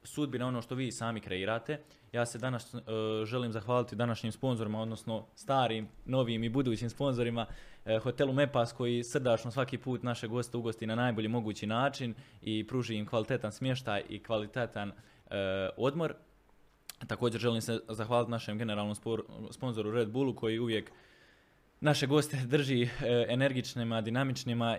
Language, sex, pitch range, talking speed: Croatian, male, 115-130 Hz, 150 wpm